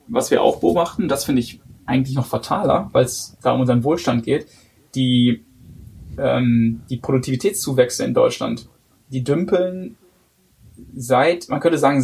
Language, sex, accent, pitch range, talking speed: German, male, German, 125-165 Hz, 145 wpm